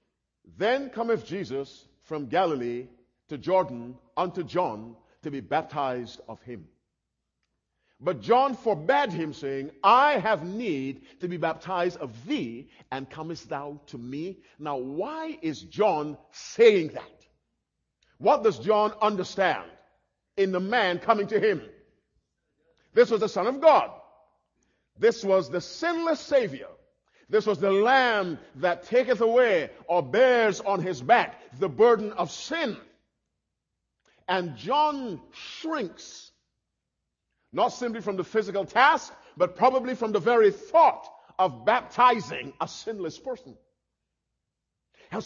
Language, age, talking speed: English, 50-69, 125 wpm